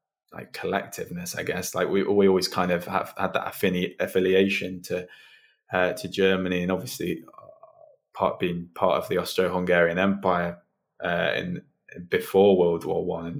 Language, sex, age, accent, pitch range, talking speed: English, male, 20-39, British, 85-95 Hz, 160 wpm